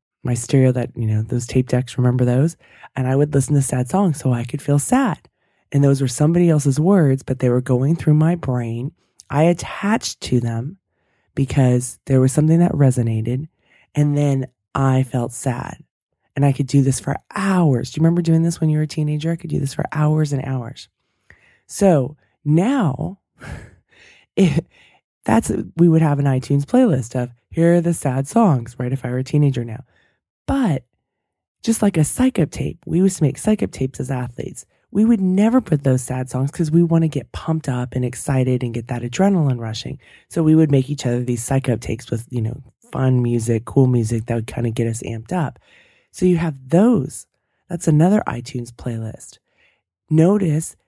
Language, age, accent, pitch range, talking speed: English, 20-39, American, 125-165 Hz, 195 wpm